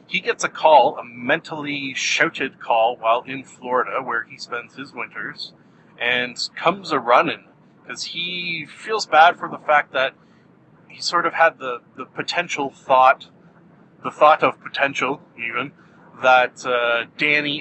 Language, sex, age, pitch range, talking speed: English, male, 30-49, 130-170 Hz, 150 wpm